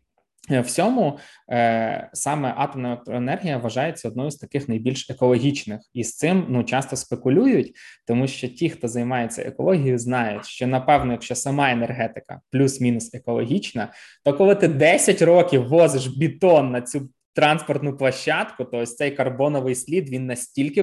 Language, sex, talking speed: Ukrainian, male, 140 wpm